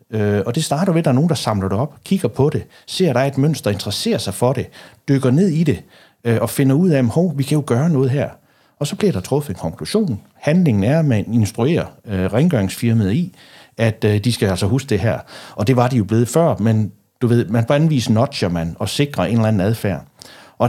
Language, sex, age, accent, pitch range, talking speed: Danish, male, 60-79, native, 100-140 Hz, 245 wpm